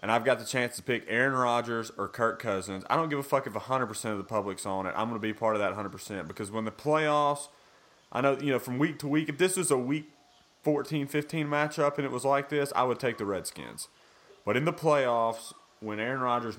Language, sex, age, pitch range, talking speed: English, male, 30-49, 100-125 Hz, 250 wpm